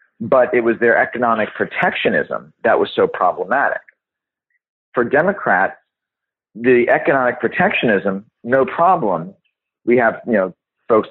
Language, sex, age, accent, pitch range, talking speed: English, male, 40-59, American, 105-135 Hz, 120 wpm